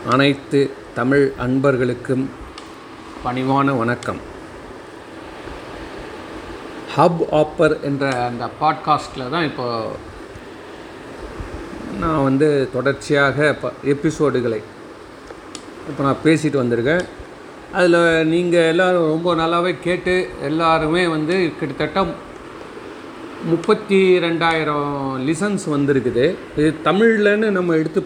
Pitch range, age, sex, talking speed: 145-180 Hz, 40-59, male, 80 wpm